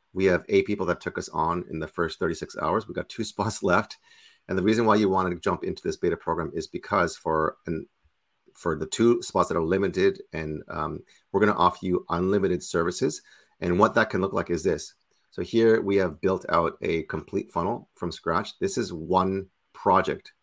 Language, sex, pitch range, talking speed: English, male, 85-100 Hz, 215 wpm